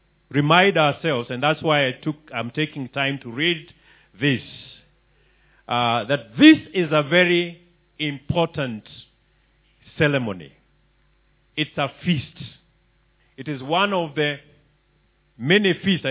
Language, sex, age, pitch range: English, male, 50-69, 140-195 Hz